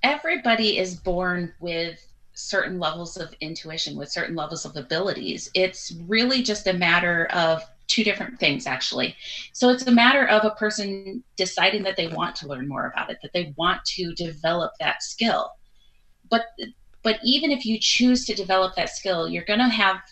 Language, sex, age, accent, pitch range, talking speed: English, female, 30-49, American, 175-220 Hz, 175 wpm